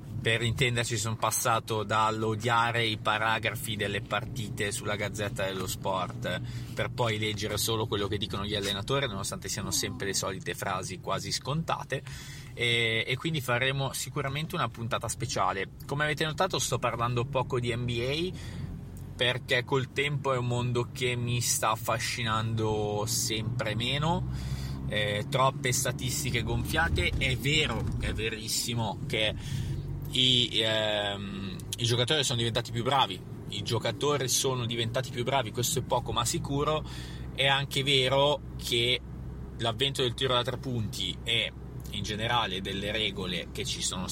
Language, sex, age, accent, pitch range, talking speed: Italian, male, 20-39, native, 110-130 Hz, 140 wpm